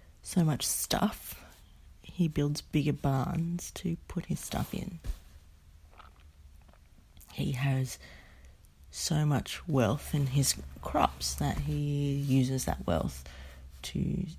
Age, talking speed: 30-49, 110 wpm